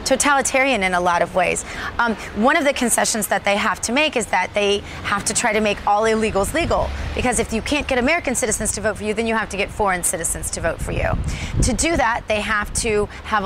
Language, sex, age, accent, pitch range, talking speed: English, female, 30-49, American, 200-260 Hz, 250 wpm